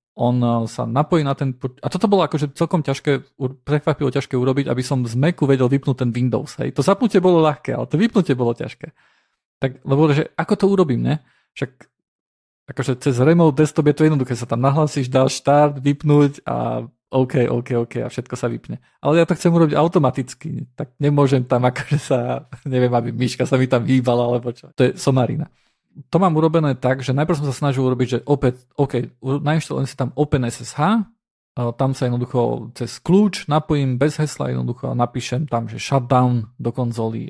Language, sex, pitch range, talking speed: Slovak, male, 125-150 Hz, 190 wpm